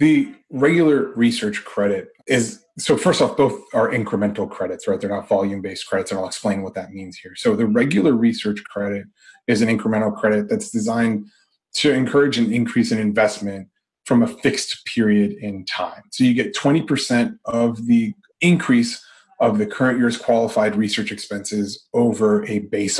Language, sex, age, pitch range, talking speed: English, male, 30-49, 105-145 Hz, 165 wpm